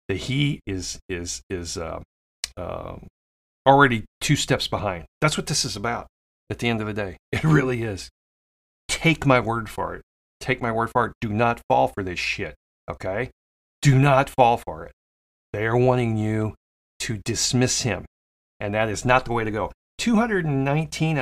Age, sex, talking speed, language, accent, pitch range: 40-59, male, 180 wpm, English, American, 90-130 Hz